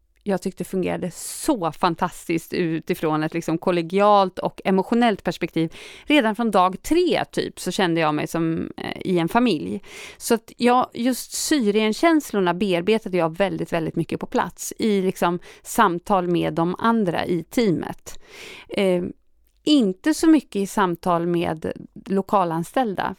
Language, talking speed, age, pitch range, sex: Swedish, 140 wpm, 30-49, 180-245 Hz, female